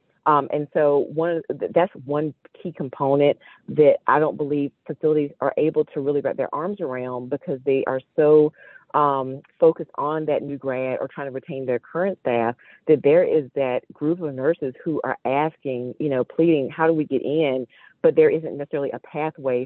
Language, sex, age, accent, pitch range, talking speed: English, female, 40-59, American, 130-155 Hz, 190 wpm